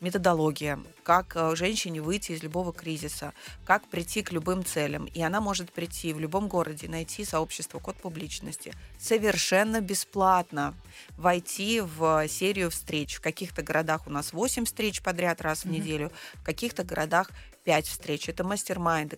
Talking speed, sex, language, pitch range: 145 wpm, female, Russian, 160-185 Hz